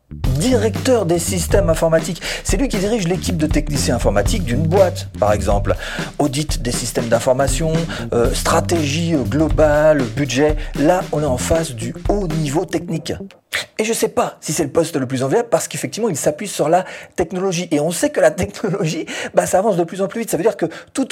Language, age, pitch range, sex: French, 40-59, 125-180 Hz, male